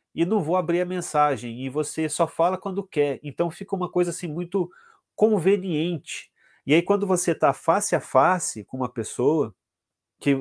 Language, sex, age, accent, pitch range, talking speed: Portuguese, male, 40-59, Brazilian, 120-155 Hz, 180 wpm